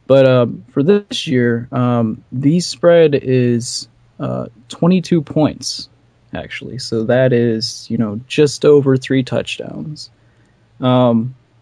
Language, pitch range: English, 115-130 Hz